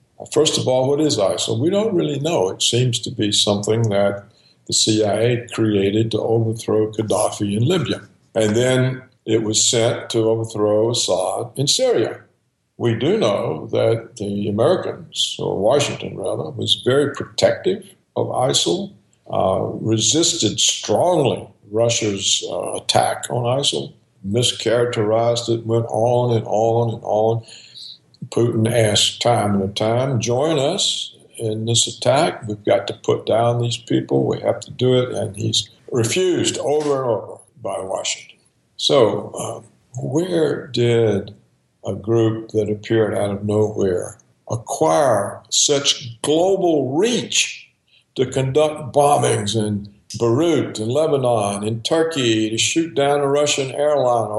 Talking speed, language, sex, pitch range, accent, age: 135 wpm, English, male, 110-125 Hz, American, 60-79